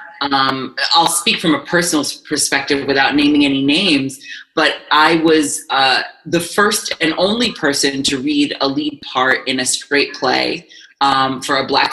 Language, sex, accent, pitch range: English, female, American, 145-200 Hz